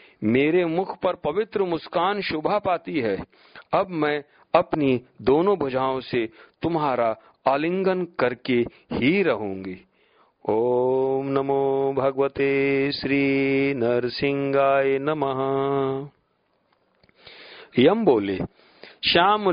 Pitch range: 135-190 Hz